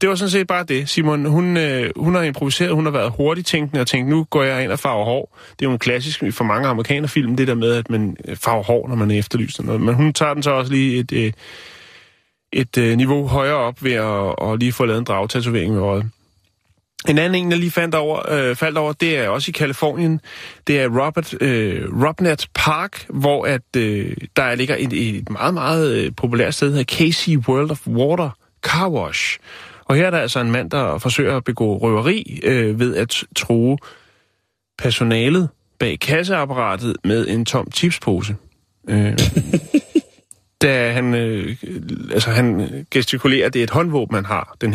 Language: Danish